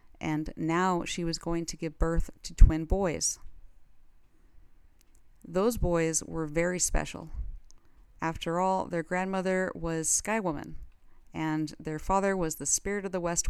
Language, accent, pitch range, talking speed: English, American, 155-180 Hz, 140 wpm